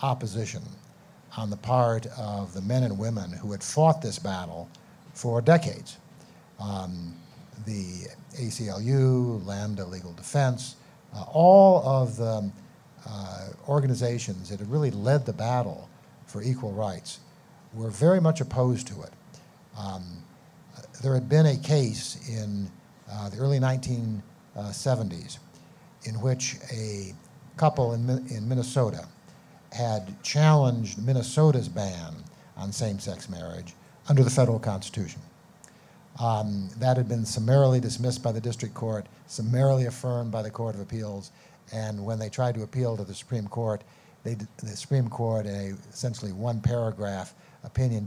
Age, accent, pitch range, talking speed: 60-79, American, 105-140 Hz, 135 wpm